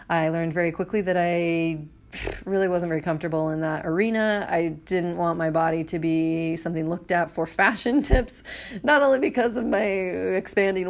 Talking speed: 175 wpm